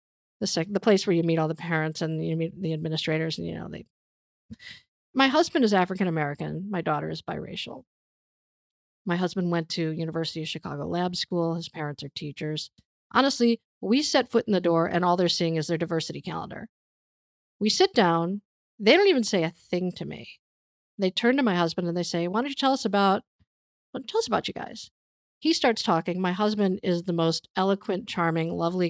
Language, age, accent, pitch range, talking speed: English, 50-69, American, 165-230 Hz, 195 wpm